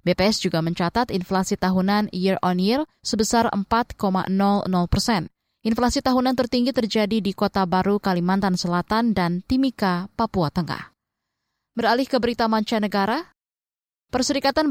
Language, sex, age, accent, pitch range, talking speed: Indonesian, female, 20-39, native, 185-230 Hz, 120 wpm